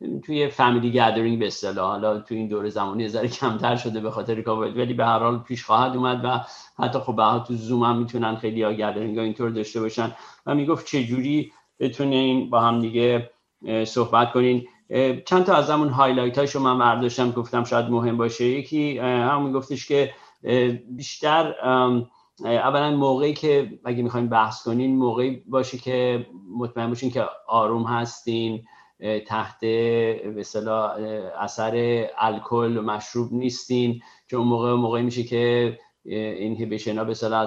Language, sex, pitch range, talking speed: Persian, male, 115-130 Hz, 155 wpm